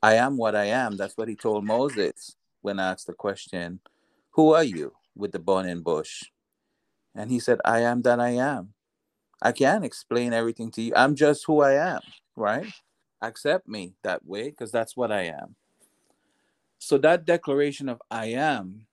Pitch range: 95-120 Hz